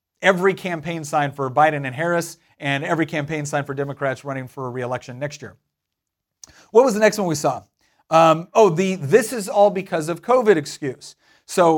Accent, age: American, 40-59